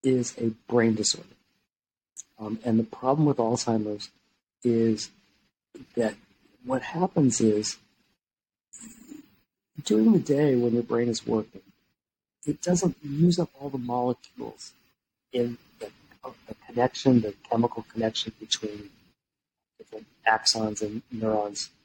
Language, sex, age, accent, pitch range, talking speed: English, male, 50-69, American, 110-140 Hz, 115 wpm